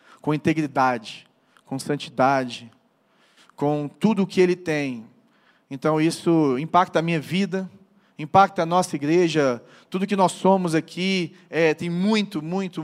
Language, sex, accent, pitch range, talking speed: Portuguese, male, Brazilian, 150-180 Hz, 135 wpm